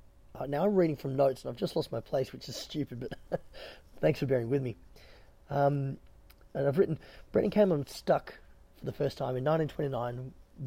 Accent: Australian